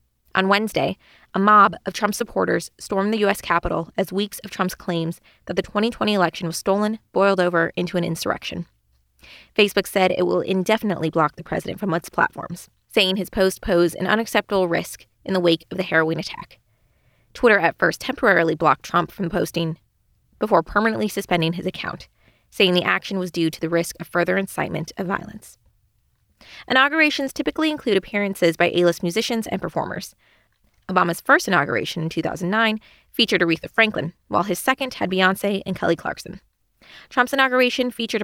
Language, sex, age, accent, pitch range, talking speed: English, female, 20-39, American, 170-215 Hz, 165 wpm